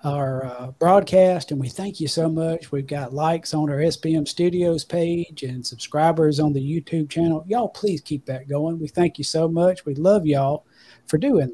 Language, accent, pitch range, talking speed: English, American, 150-185 Hz, 200 wpm